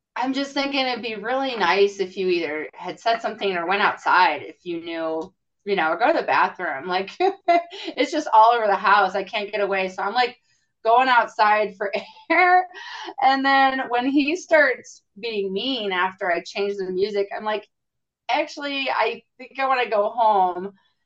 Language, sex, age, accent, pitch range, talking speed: English, female, 30-49, American, 185-250 Hz, 190 wpm